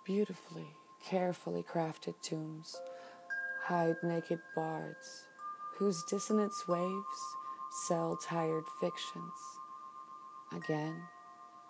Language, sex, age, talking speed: English, female, 40-59, 70 wpm